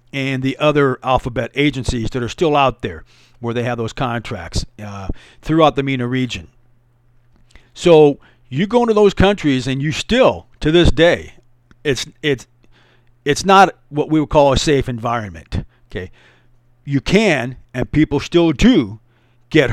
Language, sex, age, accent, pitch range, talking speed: English, male, 50-69, American, 120-155 Hz, 155 wpm